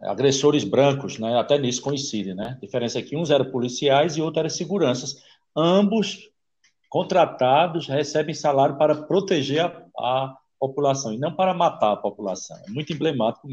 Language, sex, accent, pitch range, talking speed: Portuguese, male, Brazilian, 105-145 Hz, 165 wpm